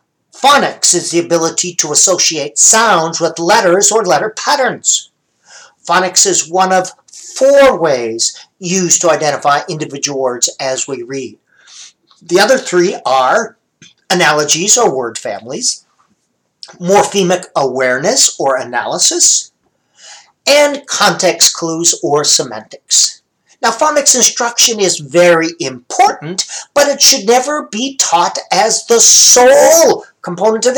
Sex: male